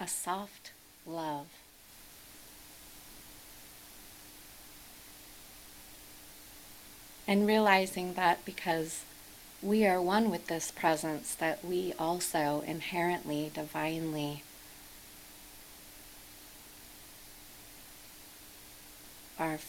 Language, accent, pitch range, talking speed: English, American, 150-175 Hz, 60 wpm